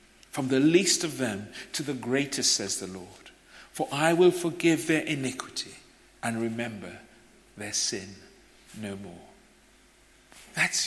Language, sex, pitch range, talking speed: English, male, 120-165 Hz, 135 wpm